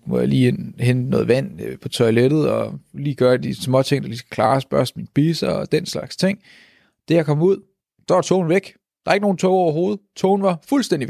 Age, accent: 30-49, native